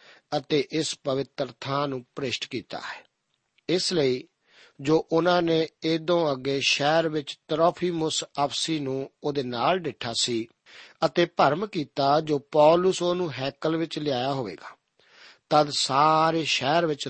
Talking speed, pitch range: 135 wpm, 135-160 Hz